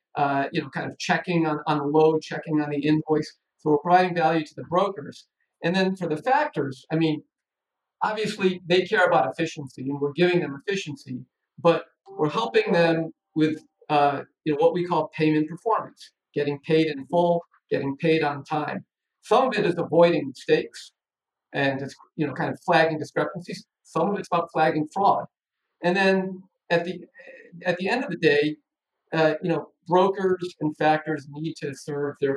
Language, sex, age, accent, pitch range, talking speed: English, male, 50-69, American, 150-175 Hz, 185 wpm